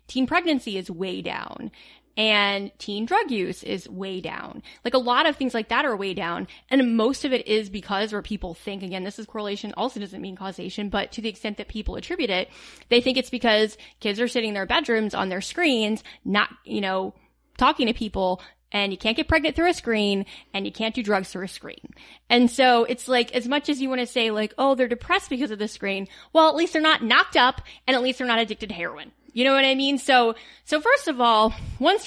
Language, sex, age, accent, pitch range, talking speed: English, female, 20-39, American, 215-290 Hz, 240 wpm